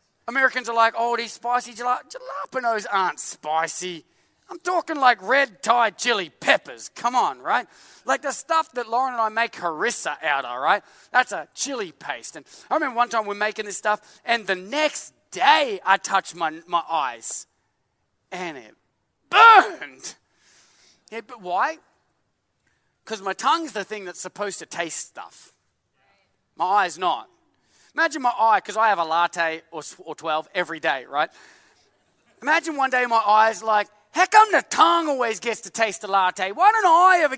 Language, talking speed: English, 170 wpm